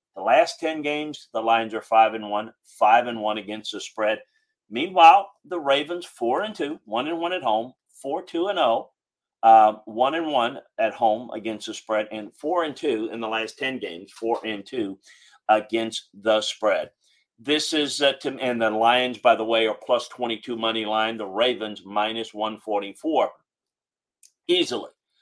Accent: American